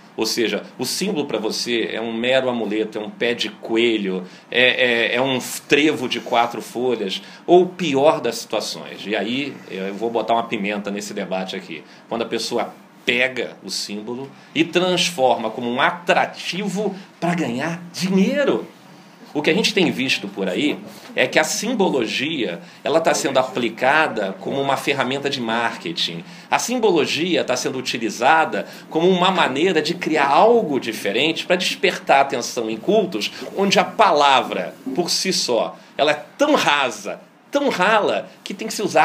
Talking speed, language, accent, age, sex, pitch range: 160 wpm, Portuguese, Brazilian, 40-59, male, 115-180 Hz